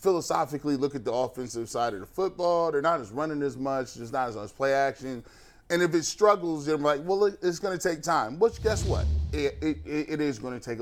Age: 30-49